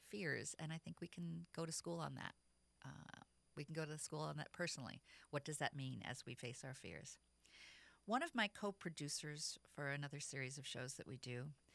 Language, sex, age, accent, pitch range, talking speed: English, female, 50-69, American, 130-170 Hz, 215 wpm